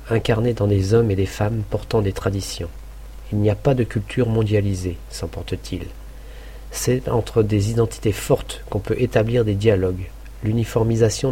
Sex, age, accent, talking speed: male, 50-69, French, 165 wpm